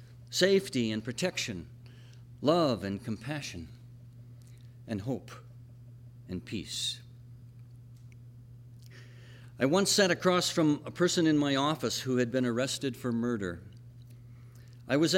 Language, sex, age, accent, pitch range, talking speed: English, male, 60-79, American, 120-150 Hz, 110 wpm